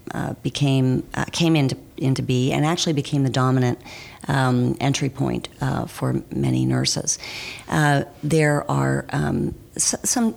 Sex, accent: female, American